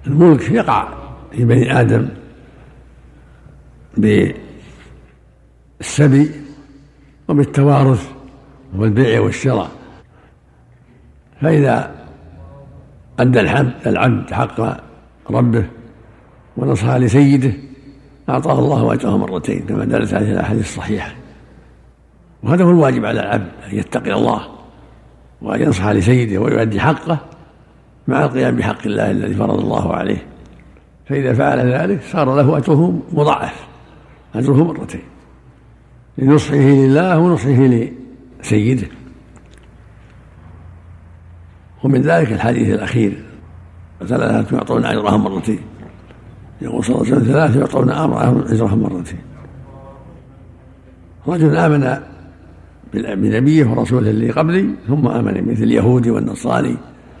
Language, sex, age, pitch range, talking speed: Arabic, male, 60-79, 100-140 Hz, 90 wpm